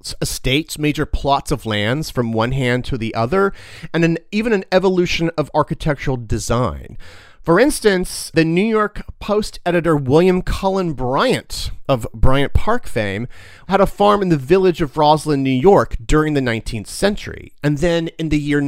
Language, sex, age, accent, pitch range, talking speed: English, male, 40-59, American, 125-175 Hz, 165 wpm